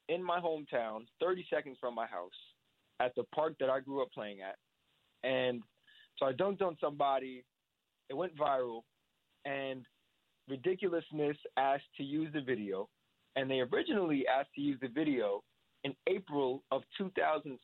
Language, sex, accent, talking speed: English, male, American, 155 wpm